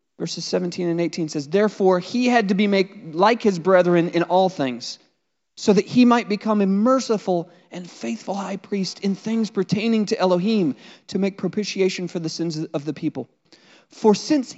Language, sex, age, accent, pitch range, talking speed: English, male, 30-49, American, 175-235 Hz, 175 wpm